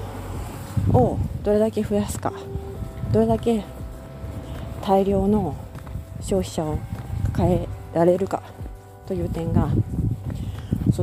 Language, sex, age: Japanese, female, 40-59